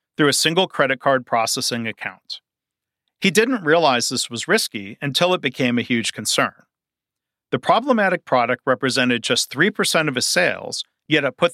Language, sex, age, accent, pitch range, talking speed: English, male, 40-59, American, 125-165 Hz, 160 wpm